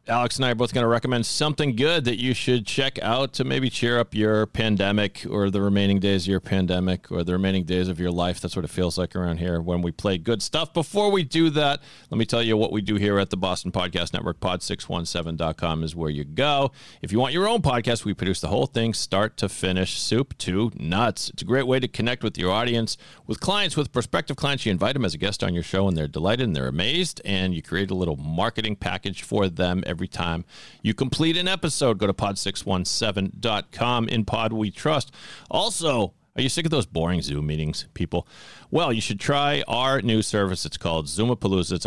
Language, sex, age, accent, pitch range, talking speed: English, male, 40-59, American, 95-130 Hz, 225 wpm